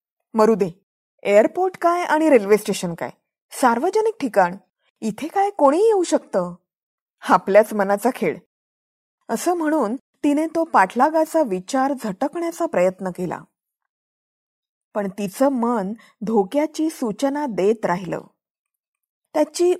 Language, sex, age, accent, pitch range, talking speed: Marathi, female, 20-39, native, 215-315 Hz, 105 wpm